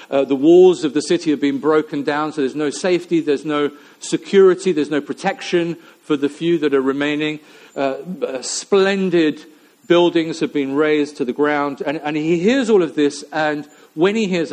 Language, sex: English, male